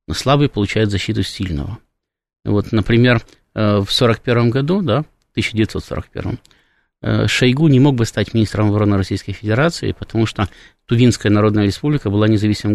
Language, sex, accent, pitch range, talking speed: Russian, male, native, 100-125 Hz, 135 wpm